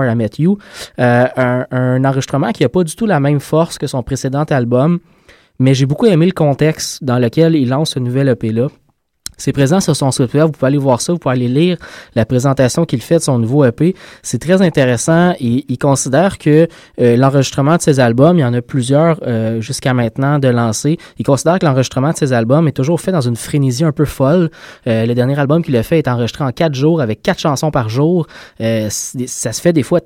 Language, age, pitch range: French, 20-39, 125-155 Hz